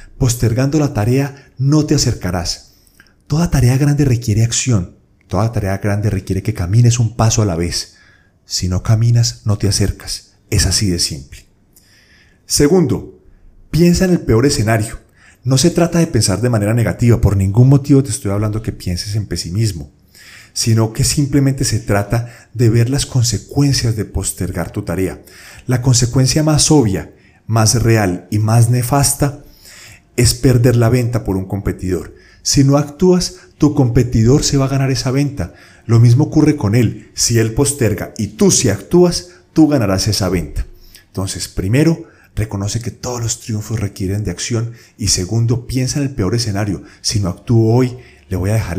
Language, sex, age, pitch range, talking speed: Spanish, male, 30-49, 95-125 Hz, 170 wpm